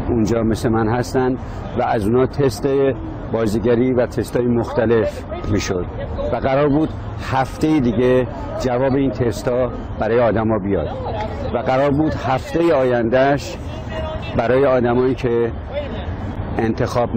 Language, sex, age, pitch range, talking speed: Persian, male, 60-79, 100-130 Hz, 120 wpm